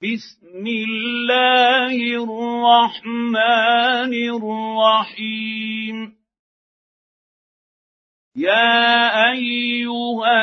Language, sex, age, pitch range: Arabic, male, 50-69, 220-240 Hz